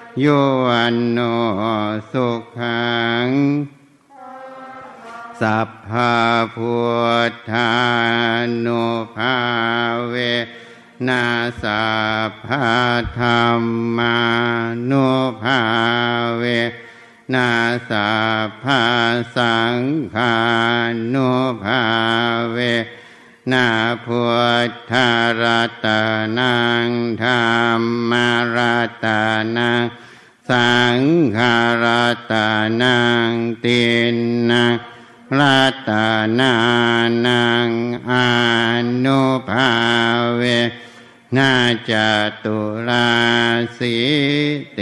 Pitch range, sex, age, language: 115-120 Hz, male, 60-79, Thai